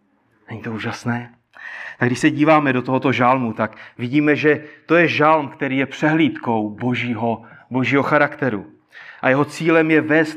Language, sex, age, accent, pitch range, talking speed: Czech, male, 30-49, native, 125-155 Hz, 155 wpm